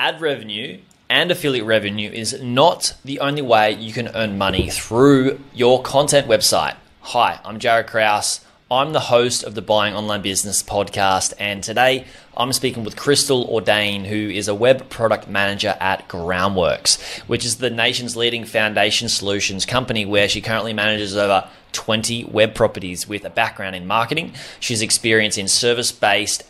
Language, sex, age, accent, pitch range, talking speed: English, male, 20-39, Australian, 100-120 Hz, 160 wpm